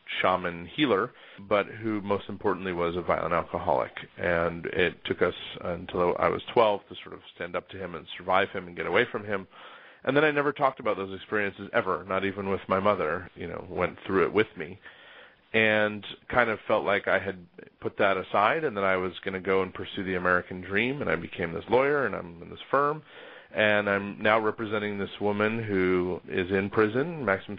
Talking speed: 215 wpm